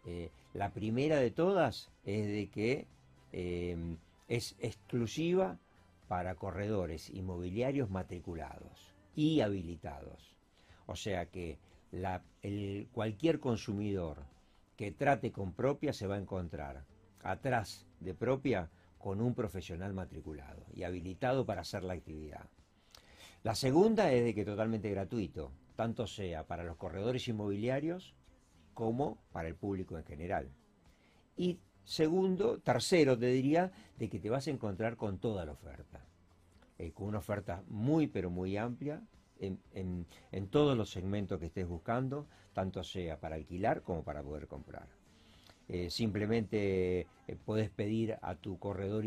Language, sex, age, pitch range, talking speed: Spanish, male, 60-79, 90-115 Hz, 135 wpm